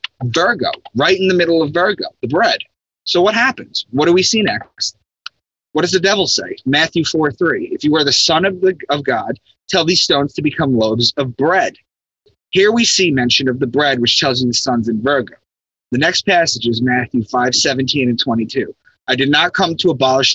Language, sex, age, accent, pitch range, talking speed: English, male, 30-49, American, 125-160 Hz, 205 wpm